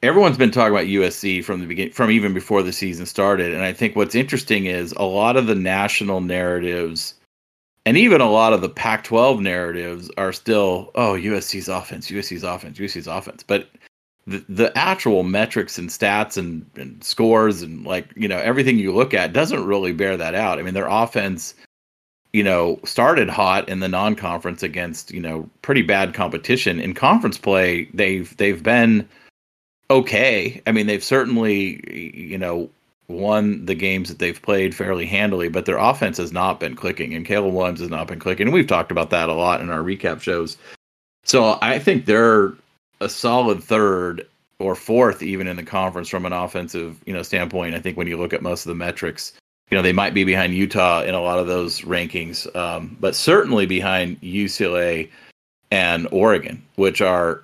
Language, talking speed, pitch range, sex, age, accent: English, 190 wpm, 85-100 Hz, male, 40-59, American